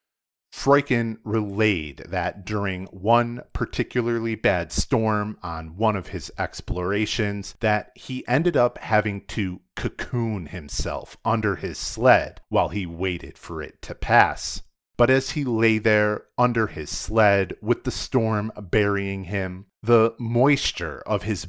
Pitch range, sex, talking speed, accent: 95-120 Hz, male, 135 wpm, American